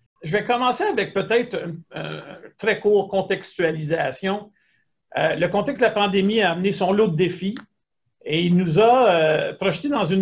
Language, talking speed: French, 180 wpm